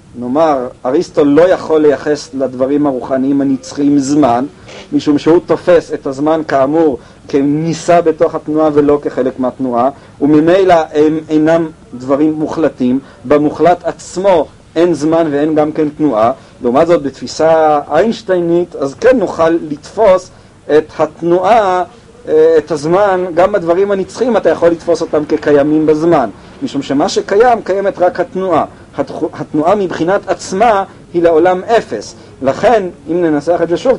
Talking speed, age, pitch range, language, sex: 130 wpm, 50-69, 140-175 Hz, Hebrew, male